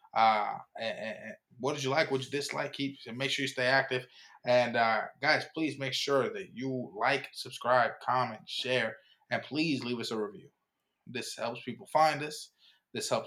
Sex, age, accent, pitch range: male, 20-39, American, 115-135 Hz